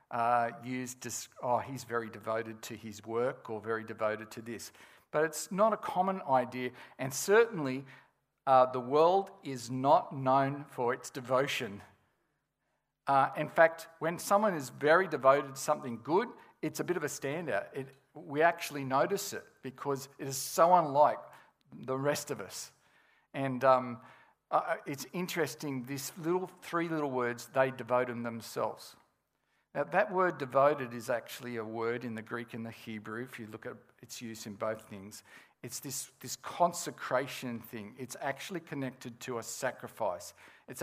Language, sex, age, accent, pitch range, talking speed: English, male, 50-69, Australian, 120-150 Hz, 165 wpm